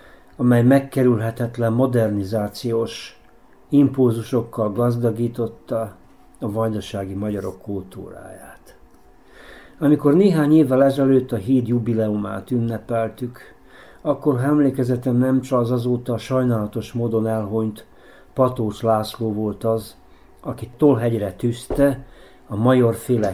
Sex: male